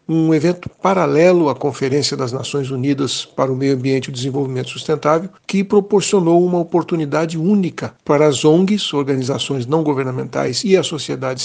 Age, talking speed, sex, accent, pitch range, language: 60-79, 155 wpm, male, Brazilian, 145-175 Hz, Portuguese